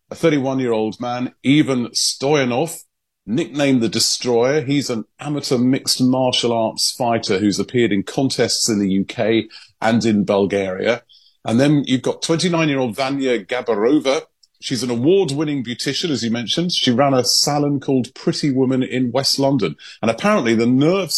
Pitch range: 110-135 Hz